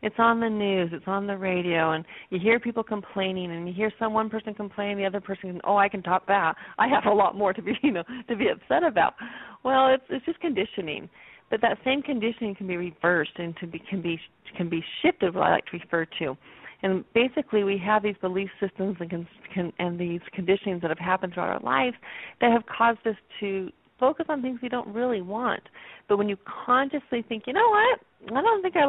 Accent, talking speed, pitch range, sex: American, 230 wpm, 185-235 Hz, female